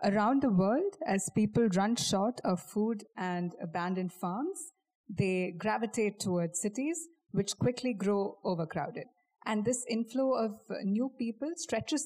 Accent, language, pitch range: Indian, English, 180-220 Hz